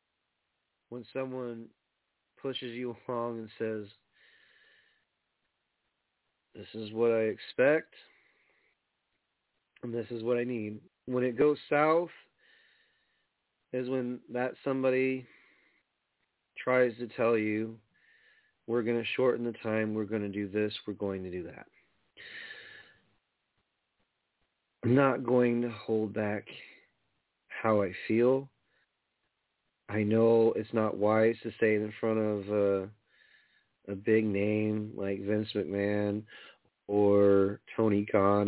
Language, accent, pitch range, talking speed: English, American, 105-125 Hz, 115 wpm